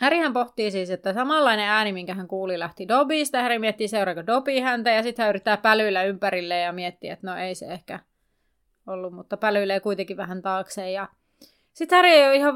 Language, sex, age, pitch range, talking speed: Finnish, female, 30-49, 185-235 Hz, 180 wpm